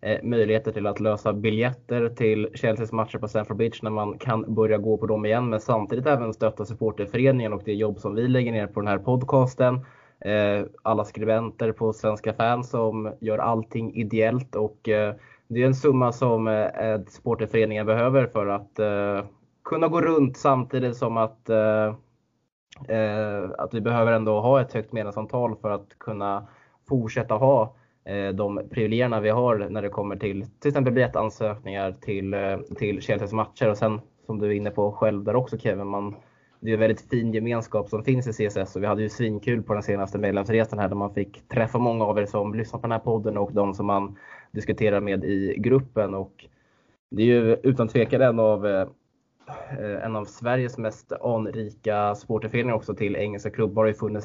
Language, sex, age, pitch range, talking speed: Swedish, male, 20-39, 105-120 Hz, 185 wpm